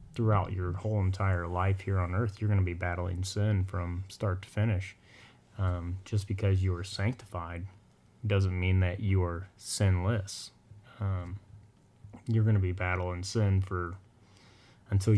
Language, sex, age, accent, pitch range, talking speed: English, male, 20-39, American, 95-110 Hz, 155 wpm